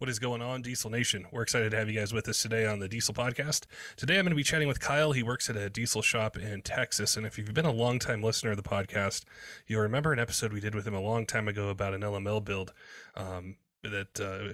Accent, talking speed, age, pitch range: American, 270 wpm, 20-39, 100-115 Hz